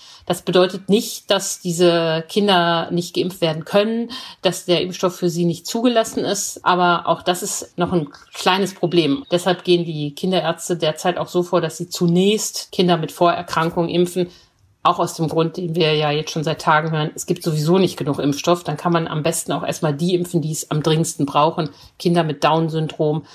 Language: German